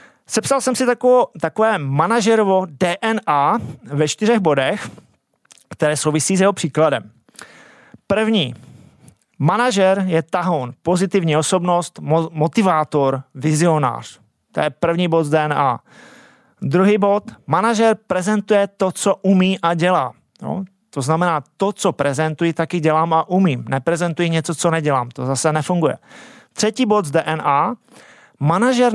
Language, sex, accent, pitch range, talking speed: Czech, male, native, 150-195 Hz, 120 wpm